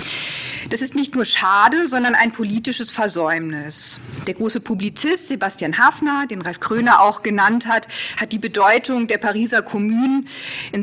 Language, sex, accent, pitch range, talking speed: German, female, German, 195-245 Hz, 150 wpm